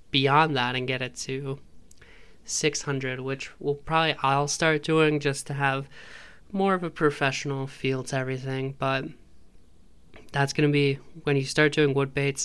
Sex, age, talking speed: male, 20-39, 165 wpm